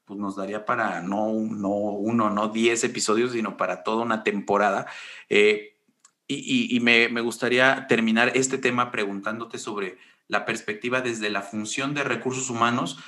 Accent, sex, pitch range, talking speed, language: Mexican, male, 105-130 Hz, 160 wpm, Spanish